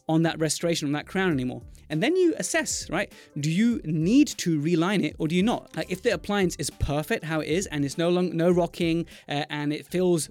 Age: 20-39